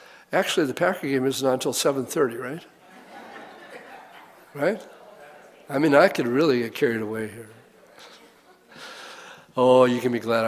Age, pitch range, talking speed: 60-79, 120-135 Hz, 135 wpm